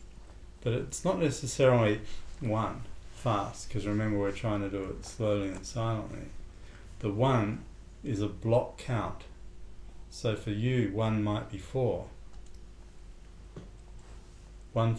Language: English